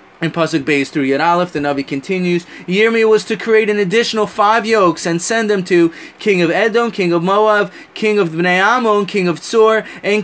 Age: 20-39